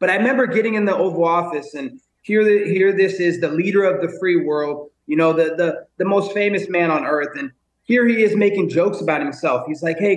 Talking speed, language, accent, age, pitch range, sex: 235 wpm, English, American, 30-49, 165-205 Hz, male